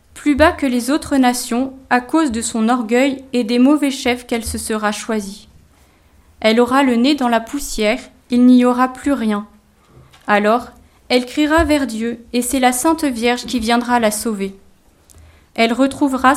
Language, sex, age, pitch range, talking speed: French, female, 30-49, 220-270 Hz, 170 wpm